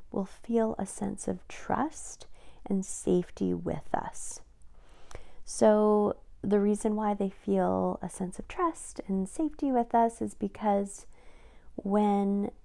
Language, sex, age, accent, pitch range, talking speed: English, female, 30-49, American, 180-225 Hz, 130 wpm